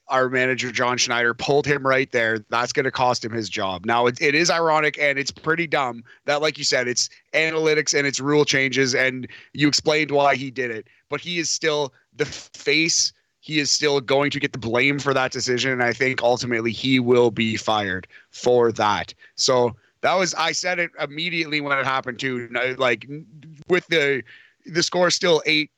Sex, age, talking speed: male, 30-49, 205 wpm